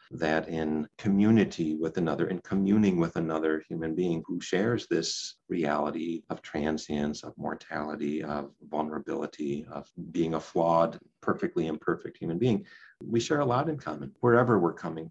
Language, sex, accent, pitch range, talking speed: English, male, American, 85-115 Hz, 150 wpm